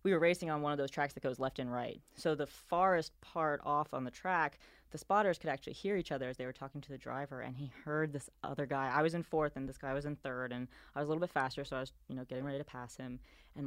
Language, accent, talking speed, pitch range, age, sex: English, American, 305 wpm, 130-165 Hz, 20-39, female